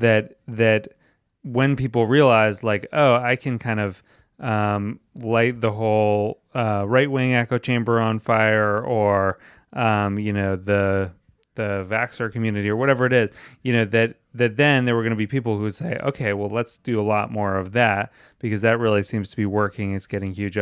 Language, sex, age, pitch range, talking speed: English, male, 30-49, 105-125 Hz, 195 wpm